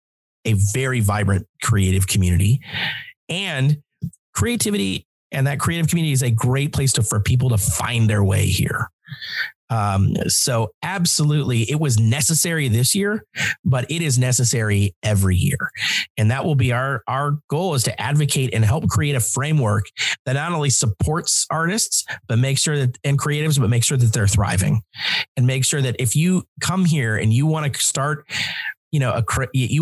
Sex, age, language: male, 30-49, English